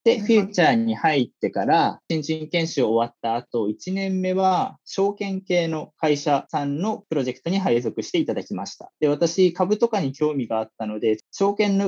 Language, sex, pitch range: Japanese, male, 140-190 Hz